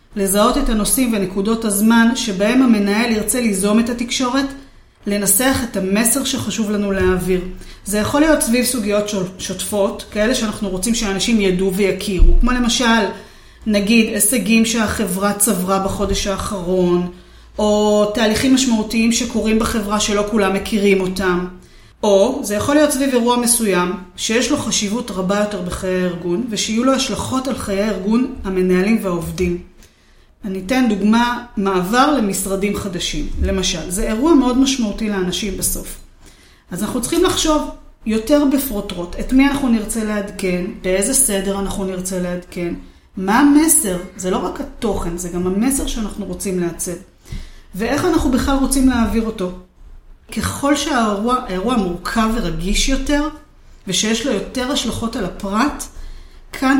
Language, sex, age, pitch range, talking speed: Hebrew, female, 30-49, 195-250 Hz, 135 wpm